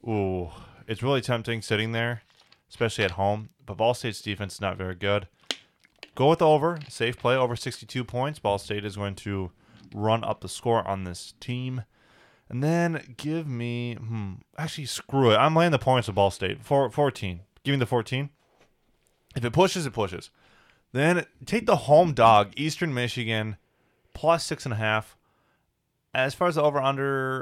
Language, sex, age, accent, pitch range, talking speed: English, male, 20-39, American, 100-135 Hz, 170 wpm